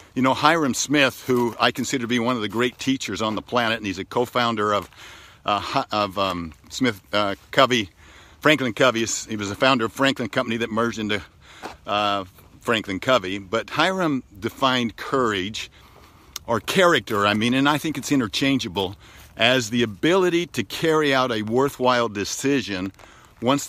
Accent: American